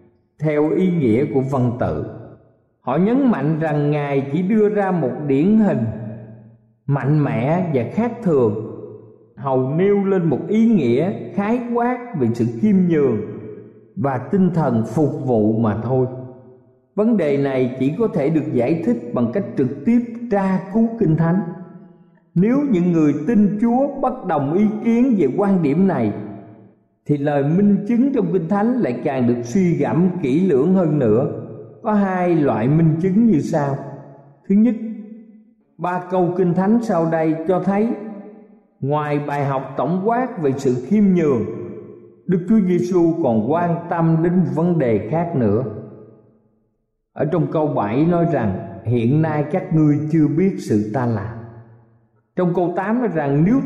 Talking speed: 160 wpm